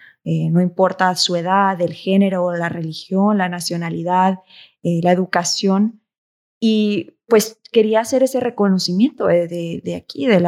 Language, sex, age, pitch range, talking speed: English, female, 20-39, 165-195 Hz, 145 wpm